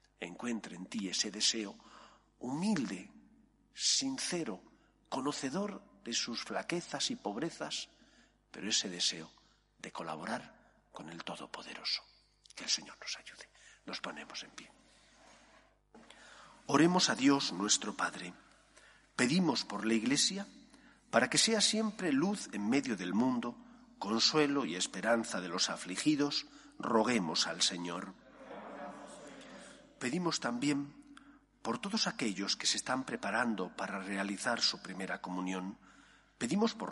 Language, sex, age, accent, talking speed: Spanish, male, 50-69, Spanish, 120 wpm